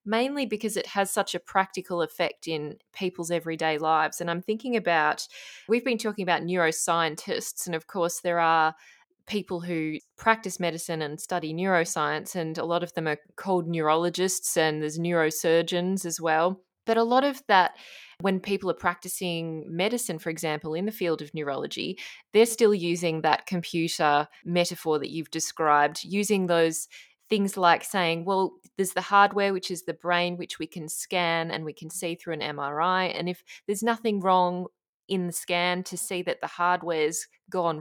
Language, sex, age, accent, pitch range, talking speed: English, female, 20-39, Australian, 160-185 Hz, 175 wpm